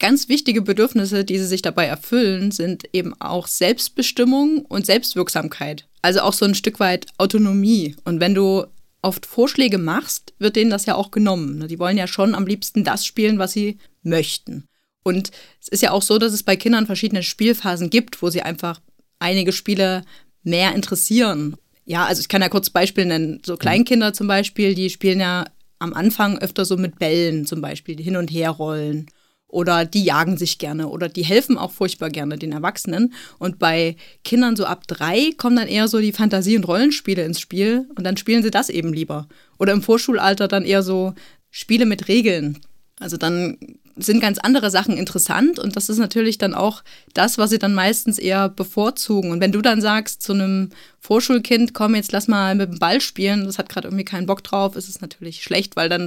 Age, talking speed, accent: 30-49, 200 wpm, German